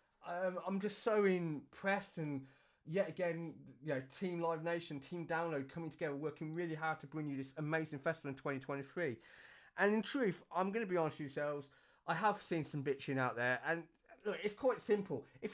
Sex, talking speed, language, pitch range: male, 195 wpm, English, 155-205 Hz